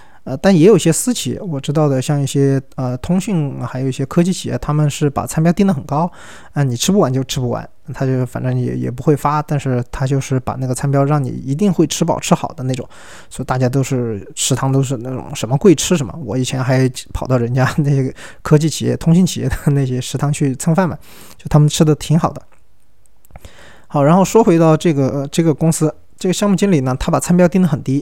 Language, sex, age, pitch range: Chinese, male, 20-39, 130-175 Hz